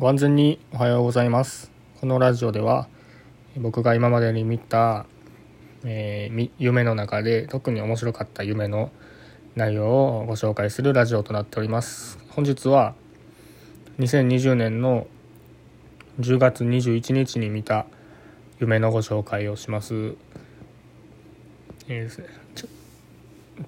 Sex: male